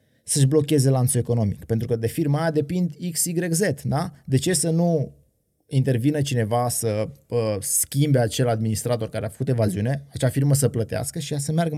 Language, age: Romanian, 20-39